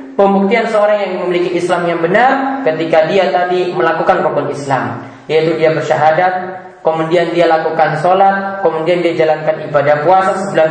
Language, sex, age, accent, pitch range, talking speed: Indonesian, male, 30-49, native, 160-220 Hz, 145 wpm